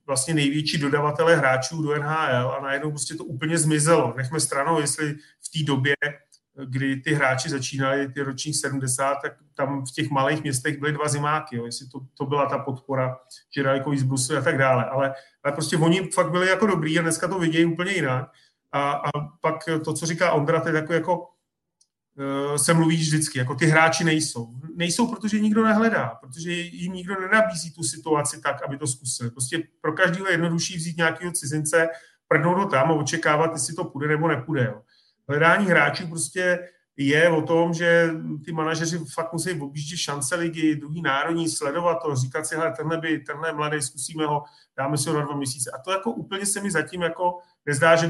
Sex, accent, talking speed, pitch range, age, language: male, native, 190 wpm, 140-165 Hz, 30-49, Czech